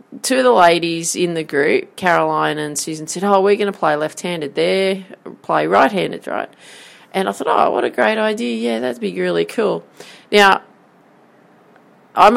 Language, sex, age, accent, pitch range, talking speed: English, female, 30-49, Australian, 155-180 Hz, 175 wpm